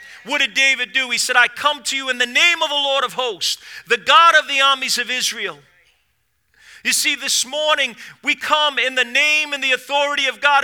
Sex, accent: male, American